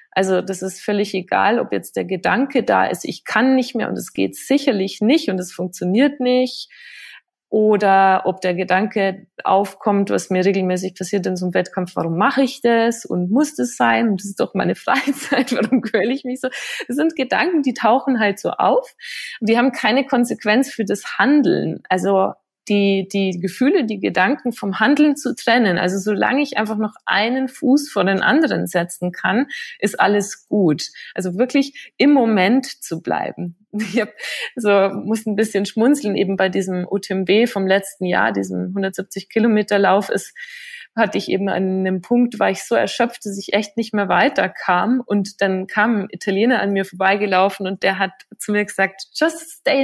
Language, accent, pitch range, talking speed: German, German, 195-260 Hz, 185 wpm